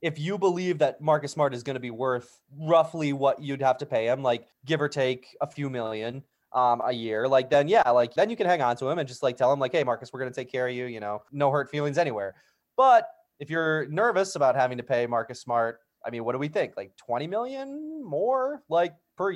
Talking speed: 255 wpm